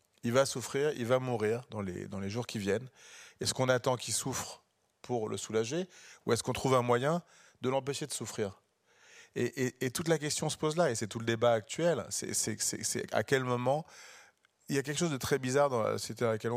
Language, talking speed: French, 240 wpm